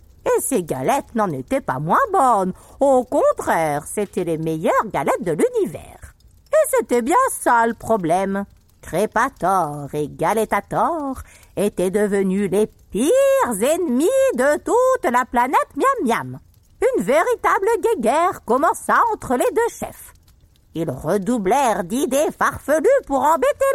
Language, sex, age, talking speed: French, female, 50-69, 125 wpm